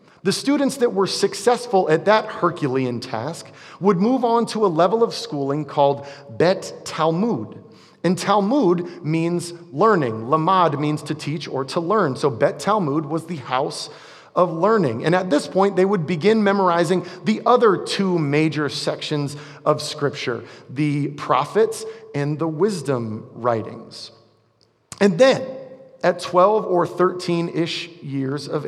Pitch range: 145-190 Hz